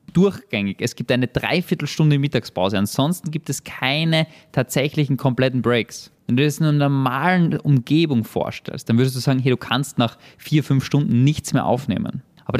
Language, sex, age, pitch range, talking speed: German, male, 20-39, 125-160 Hz, 175 wpm